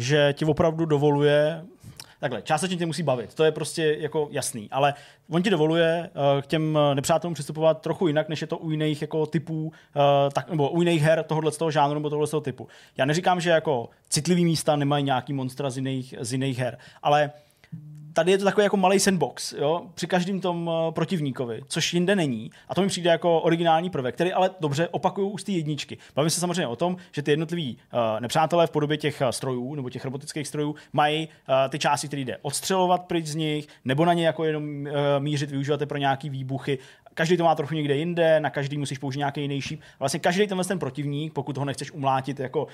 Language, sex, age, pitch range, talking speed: Czech, male, 20-39, 140-170 Hz, 205 wpm